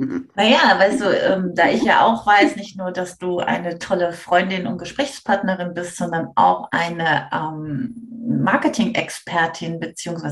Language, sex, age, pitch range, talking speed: German, female, 30-49, 175-230 Hz, 150 wpm